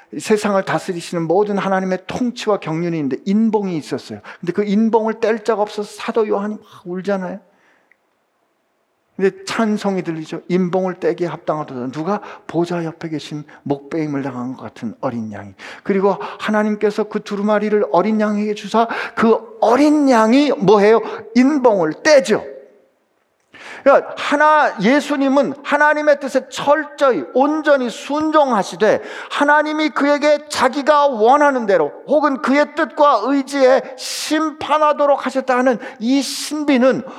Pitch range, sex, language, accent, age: 200-285 Hz, male, Korean, native, 50-69